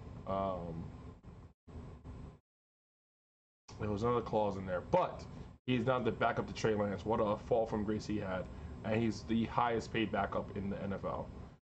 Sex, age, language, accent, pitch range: male, 20-39, English, American, 105-130 Hz